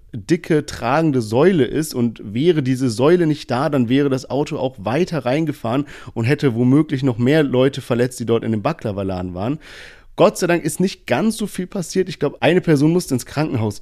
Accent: German